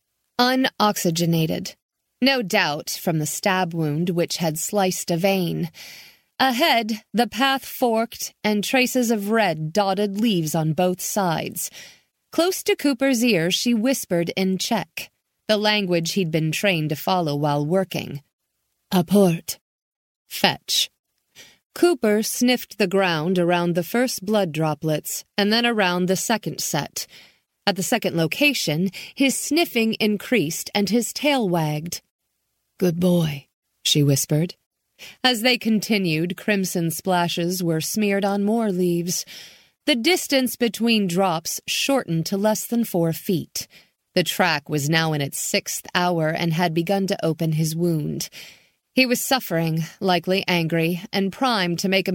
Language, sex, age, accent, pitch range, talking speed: English, female, 30-49, American, 165-225 Hz, 140 wpm